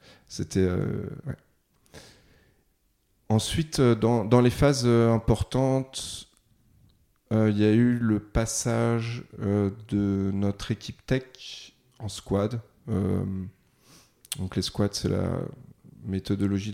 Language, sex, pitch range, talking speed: French, male, 100-115 Hz, 110 wpm